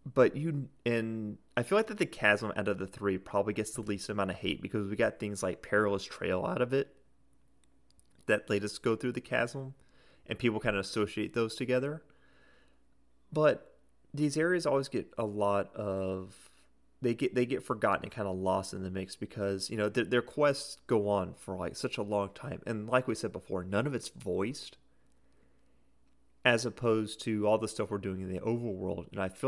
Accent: American